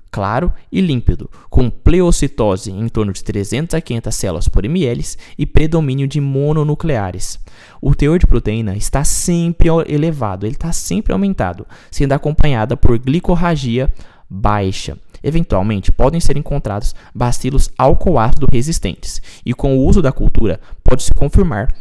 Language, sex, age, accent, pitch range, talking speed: Portuguese, male, 20-39, Brazilian, 105-145 Hz, 135 wpm